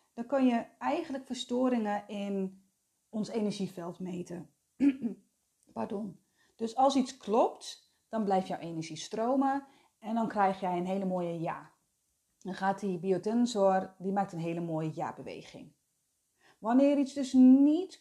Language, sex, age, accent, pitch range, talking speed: Dutch, female, 30-49, Dutch, 195-265 Hz, 135 wpm